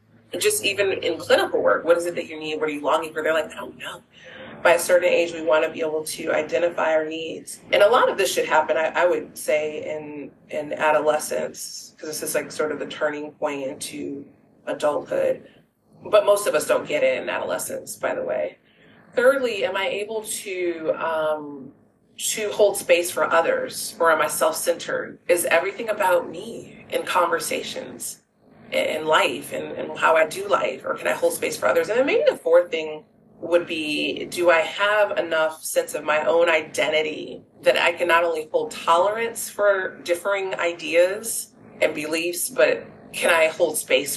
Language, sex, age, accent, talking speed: English, female, 30-49, American, 190 wpm